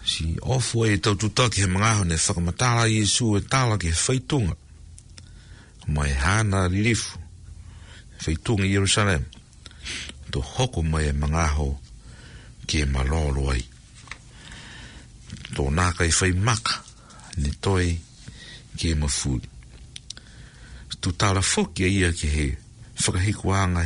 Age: 60-79